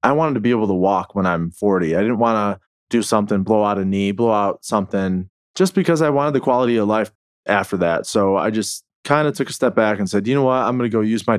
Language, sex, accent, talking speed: English, male, American, 280 wpm